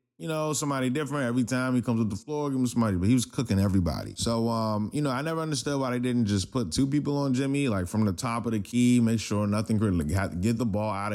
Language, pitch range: English, 100-130 Hz